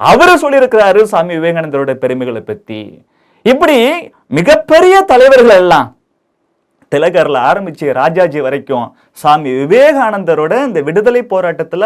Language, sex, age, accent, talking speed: Tamil, male, 30-49, native, 75 wpm